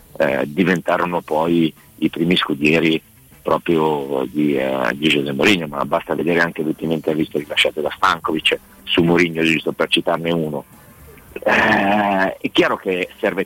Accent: native